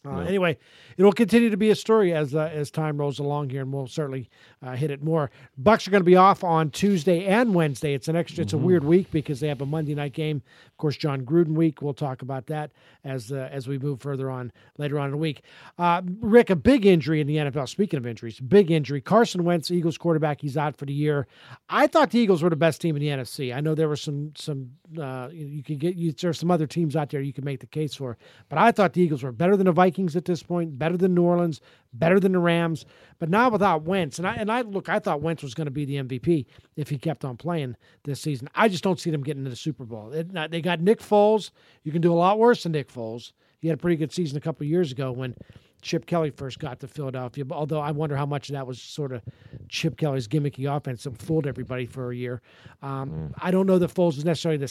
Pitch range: 140-175 Hz